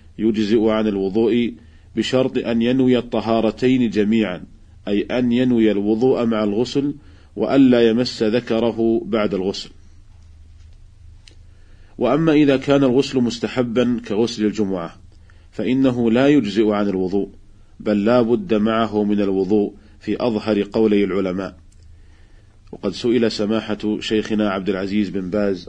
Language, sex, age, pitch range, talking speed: Arabic, male, 40-59, 100-115 Hz, 115 wpm